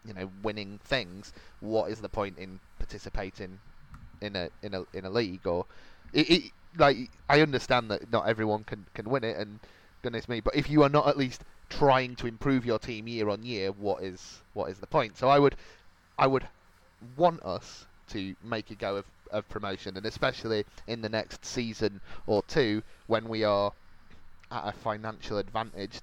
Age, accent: 20-39, British